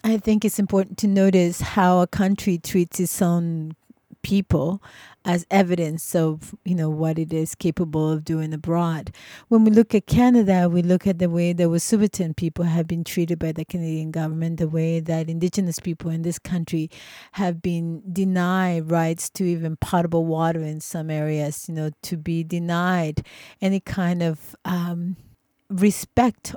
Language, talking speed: English, 170 wpm